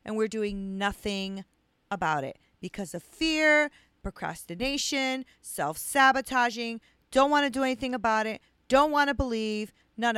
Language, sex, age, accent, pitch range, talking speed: English, female, 40-59, American, 195-295 Hz, 135 wpm